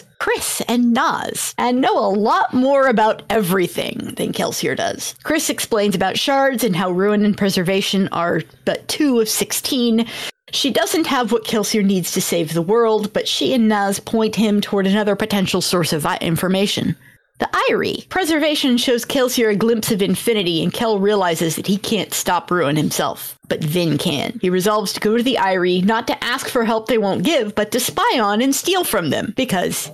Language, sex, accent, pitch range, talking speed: English, female, American, 200-255 Hz, 190 wpm